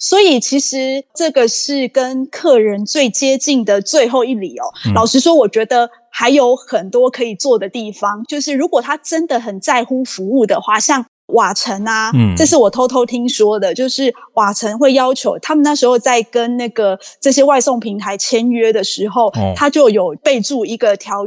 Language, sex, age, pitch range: Chinese, female, 20-39, 225-285 Hz